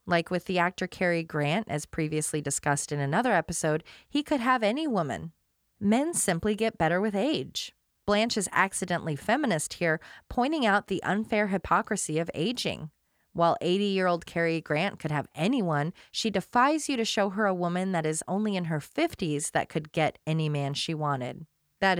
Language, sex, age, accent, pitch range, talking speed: English, female, 30-49, American, 165-220 Hz, 175 wpm